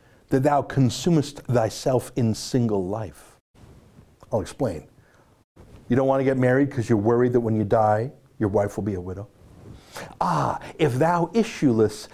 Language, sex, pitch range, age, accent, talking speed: English, male, 105-150 Hz, 60-79, American, 160 wpm